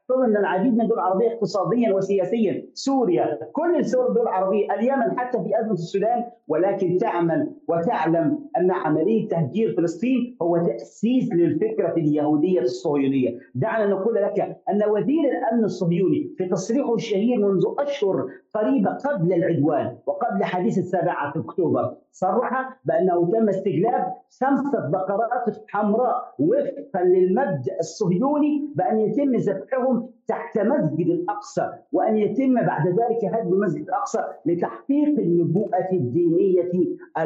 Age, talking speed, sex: 50-69, 120 wpm, male